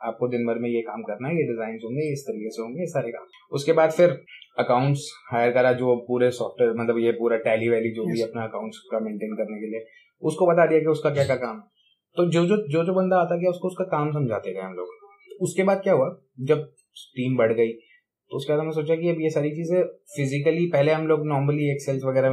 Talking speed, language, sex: 100 wpm, Hindi, male